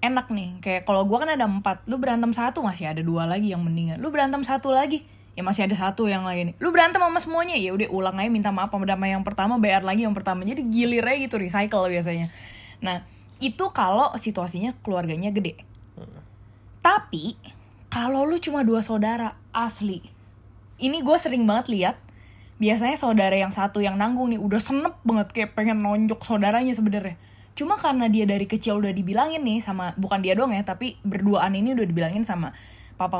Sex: female